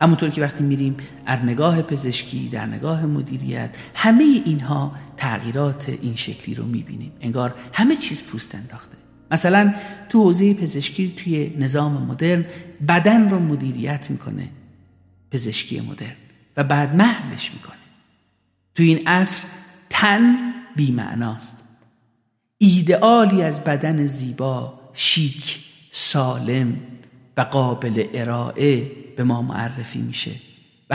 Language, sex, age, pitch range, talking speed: Persian, male, 50-69, 130-175 Hz, 110 wpm